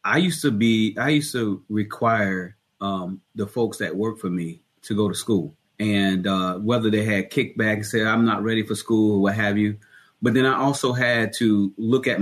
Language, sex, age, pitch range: English, male, 30-49, 100-120 Hz